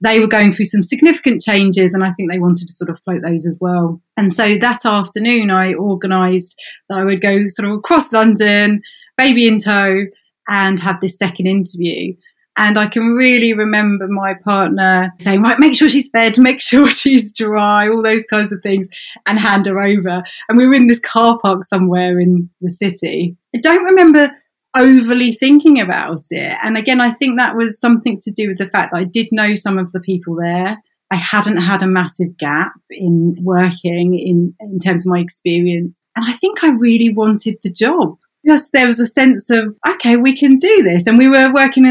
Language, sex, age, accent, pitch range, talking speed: English, female, 30-49, British, 185-235 Hz, 205 wpm